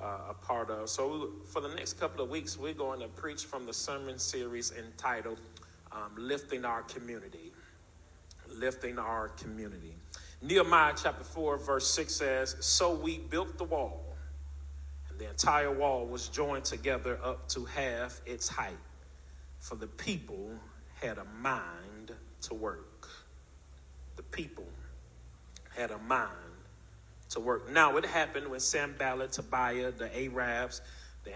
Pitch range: 85-130 Hz